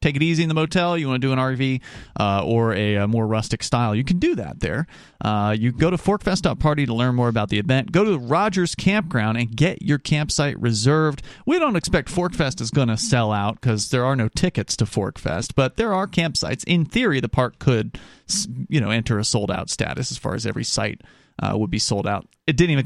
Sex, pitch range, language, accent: male, 115-160 Hz, English, American